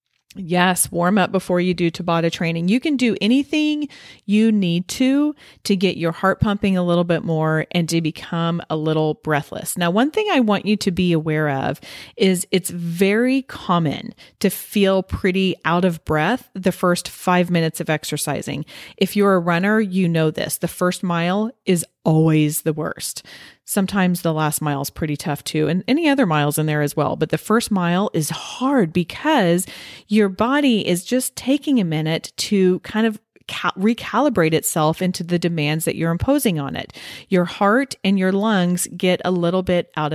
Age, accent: 30-49, American